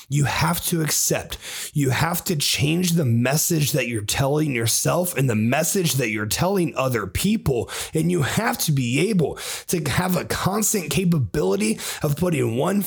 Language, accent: English, American